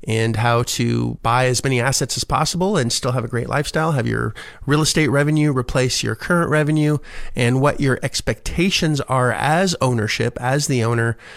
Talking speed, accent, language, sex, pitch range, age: 180 wpm, American, English, male, 120-150 Hz, 30-49